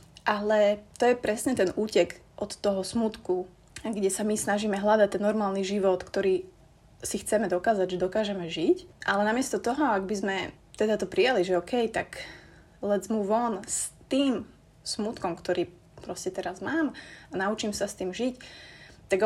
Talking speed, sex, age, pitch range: 165 wpm, female, 20-39, 185-220 Hz